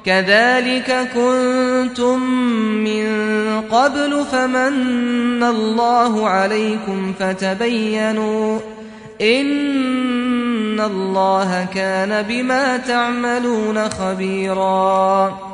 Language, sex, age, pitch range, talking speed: English, male, 30-49, 215-250 Hz, 55 wpm